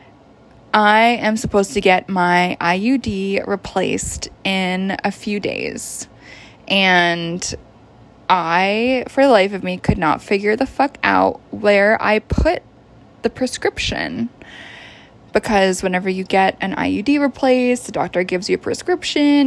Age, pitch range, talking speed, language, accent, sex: 20-39, 185-245 Hz, 135 wpm, English, American, female